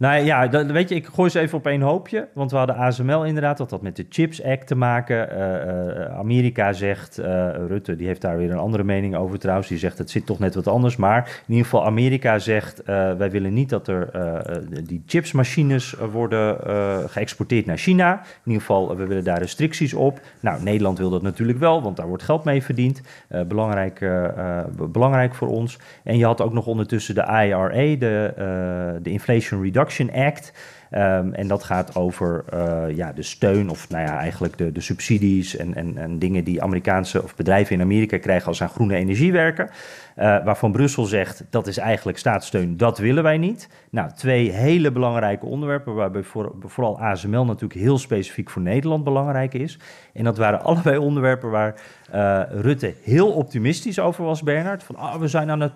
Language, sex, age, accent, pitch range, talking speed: Dutch, male, 40-59, Dutch, 95-140 Hz, 200 wpm